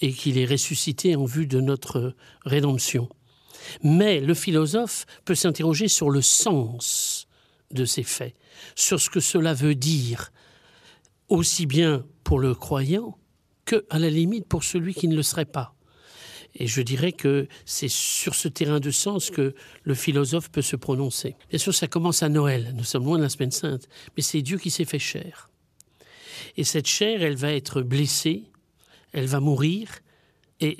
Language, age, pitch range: French, 60-79, 135-170 Hz